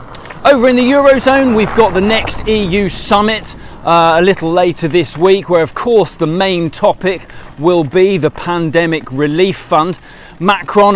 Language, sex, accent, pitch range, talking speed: English, male, British, 145-195 Hz, 160 wpm